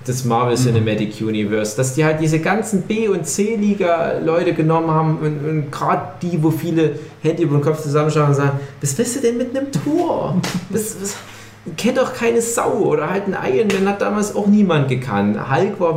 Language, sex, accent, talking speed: German, male, German, 190 wpm